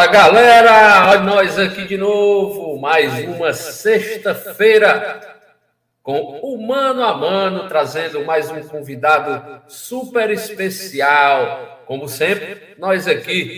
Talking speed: 110 wpm